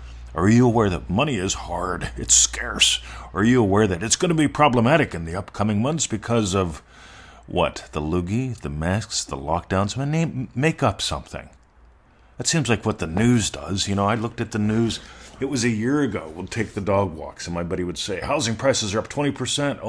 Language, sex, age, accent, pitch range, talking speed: English, male, 40-59, American, 90-120 Hz, 205 wpm